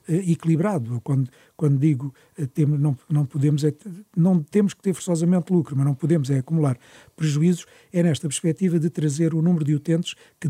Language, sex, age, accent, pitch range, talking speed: Portuguese, male, 50-69, Portuguese, 145-175 Hz, 160 wpm